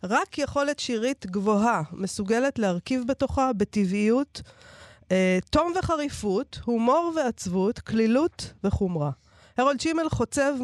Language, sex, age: Hebrew, female, 40-59